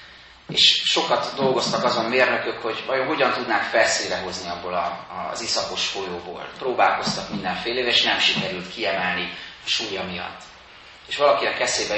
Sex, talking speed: male, 135 wpm